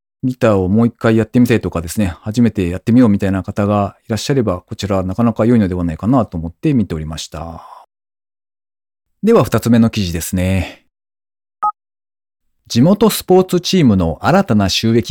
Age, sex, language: 40-59, male, Japanese